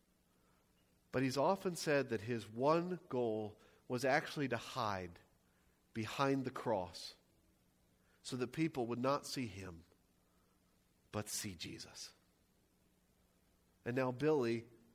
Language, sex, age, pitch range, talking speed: English, male, 40-59, 105-170 Hz, 110 wpm